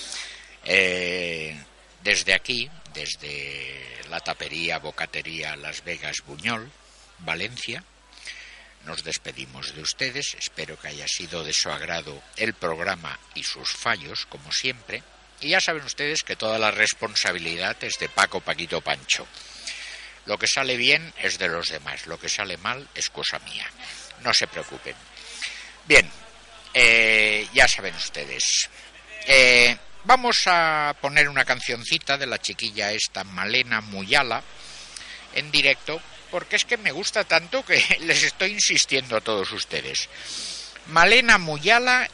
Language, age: Spanish, 60-79